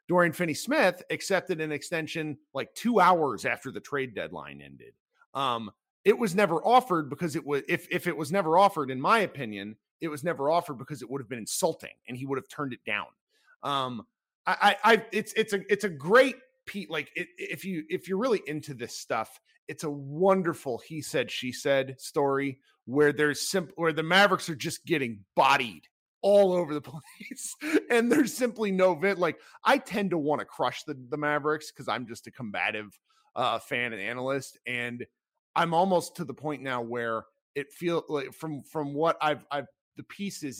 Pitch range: 135-190 Hz